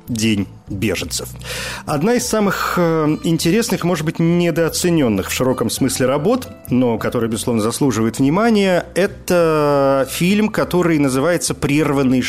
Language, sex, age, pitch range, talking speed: Russian, male, 40-59, 115-160 Hz, 110 wpm